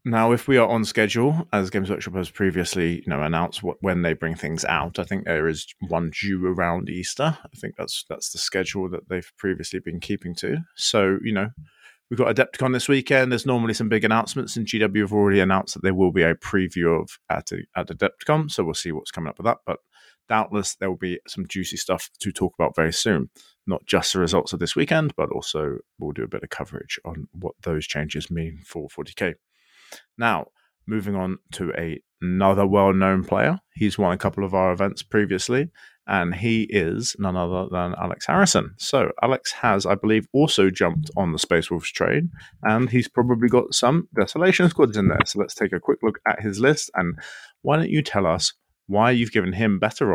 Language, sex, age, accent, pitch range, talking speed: English, male, 30-49, British, 90-115 Hz, 210 wpm